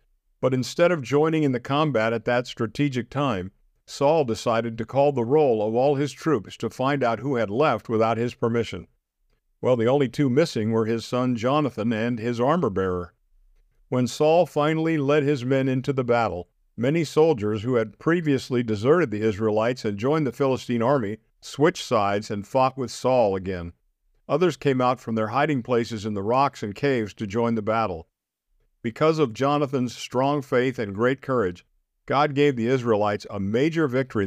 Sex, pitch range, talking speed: male, 110-140 Hz, 180 wpm